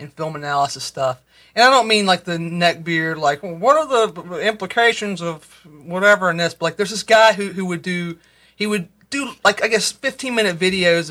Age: 40-59